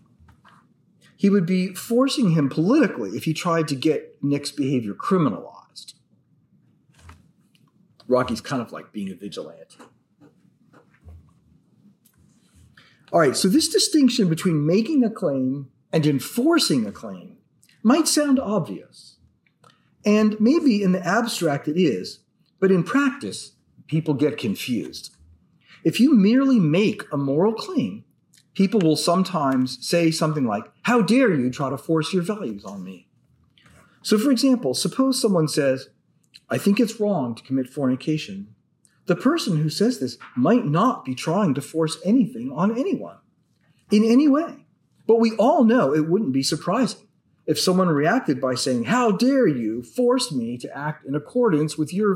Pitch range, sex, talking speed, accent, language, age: 150-235 Hz, male, 145 wpm, American, English, 40-59